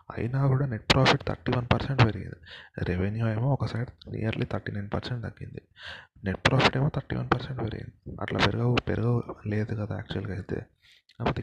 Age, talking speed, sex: 20-39, 140 wpm, male